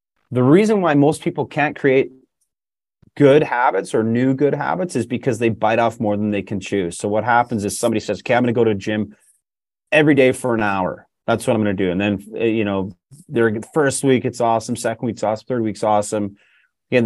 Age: 30-49